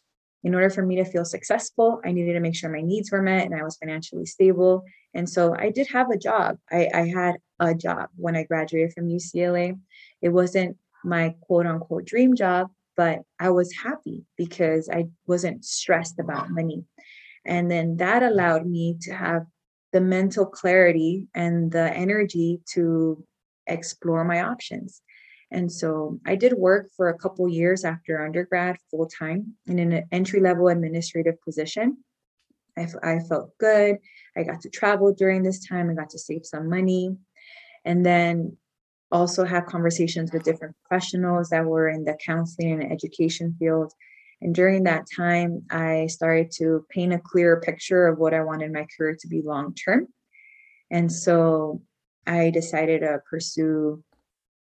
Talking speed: 165 wpm